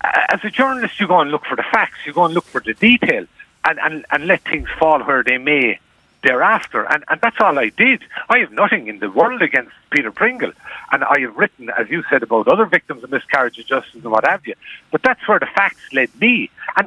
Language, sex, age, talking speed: English, male, 50-69, 240 wpm